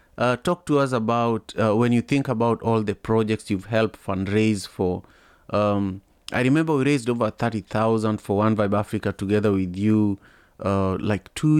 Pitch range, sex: 100-120 Hz, male